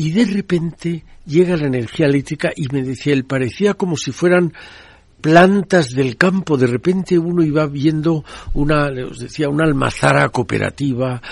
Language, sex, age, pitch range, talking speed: Spanish, male, 60-79, 130-180 Hz, 145 wpm